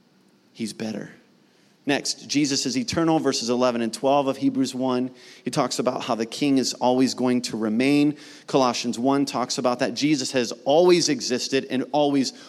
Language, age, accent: English, 30-49, American